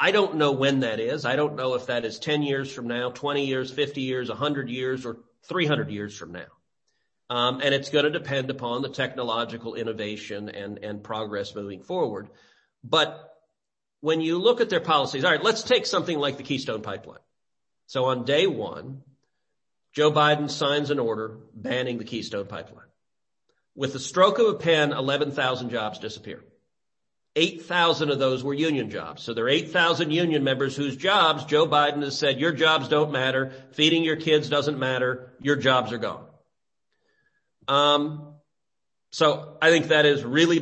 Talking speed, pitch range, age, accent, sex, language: 175 wpm, 125-155 Hz, 40-59, American, male, English